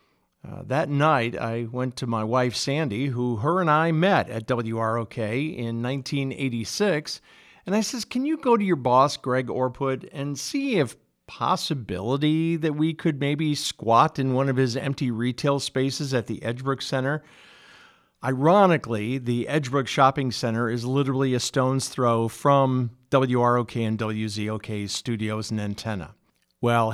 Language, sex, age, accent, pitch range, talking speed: English, male, 50-69, American, 120-155 Hz, 150 wpm